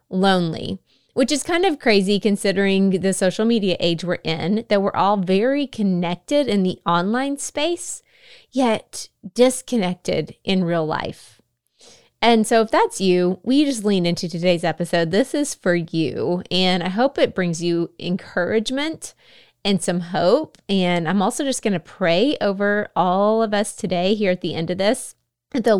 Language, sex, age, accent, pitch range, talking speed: English, female, 20-39, American, 180-230 Hz, 165 wpm